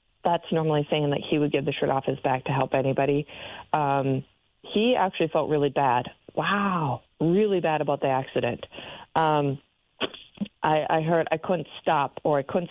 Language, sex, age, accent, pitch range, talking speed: English, female, 40-59, American, 145-180 Hz, 175 wpm